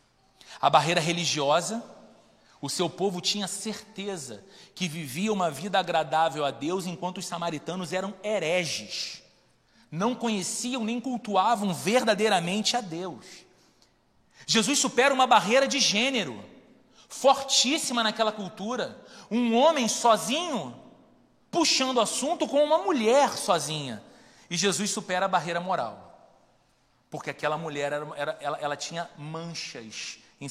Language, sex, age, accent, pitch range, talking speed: Portuguese, male, 40-59, Brazilian, 165-245 Hz, 120 wpm